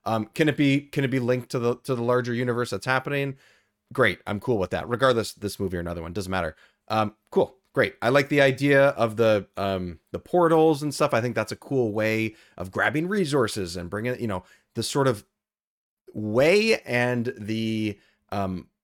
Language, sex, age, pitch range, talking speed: English, male, 30-49, 105-135 Hz, 200 wpm